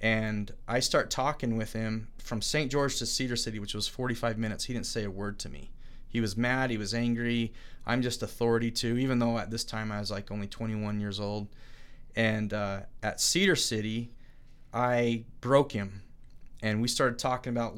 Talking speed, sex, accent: 195 wpm, male, American